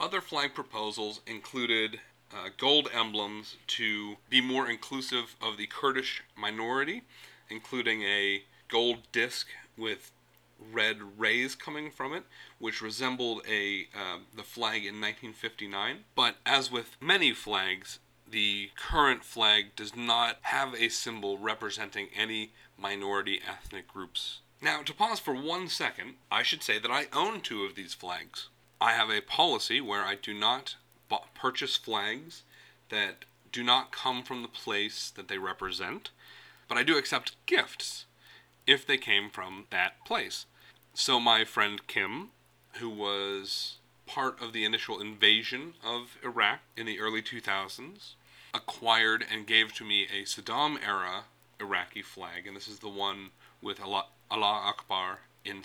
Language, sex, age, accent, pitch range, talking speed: English, male, 30-49, American, 105-120 Hz, 140 wpm